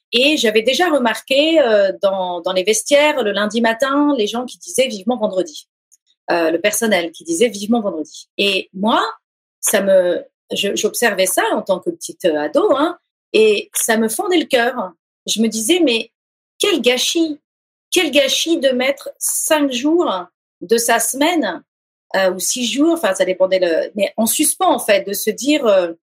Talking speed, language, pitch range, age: 190 wpm, French, 190-280 Hz, 40-59